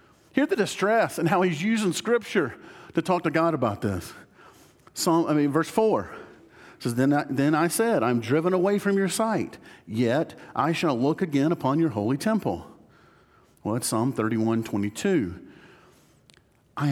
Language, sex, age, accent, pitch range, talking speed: English, male, 50-69, American, 115-165 Hz, 165 wpm